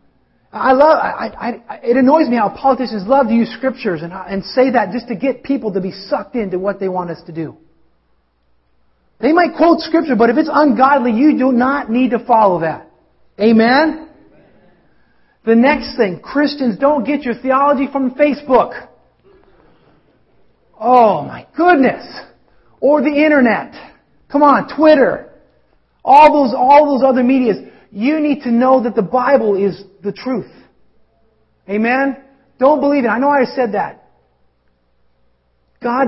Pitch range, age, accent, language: 185-265 Hz, 30-49, American, English